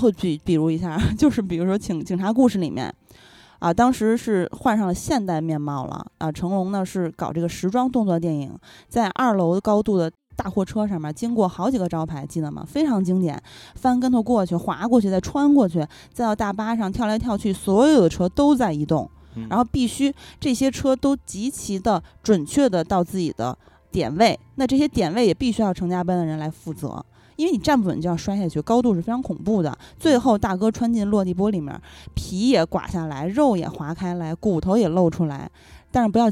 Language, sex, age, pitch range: Chinese, female, 20-39, 175-240 Hz